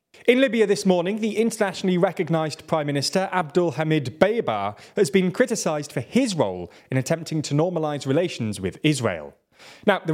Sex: male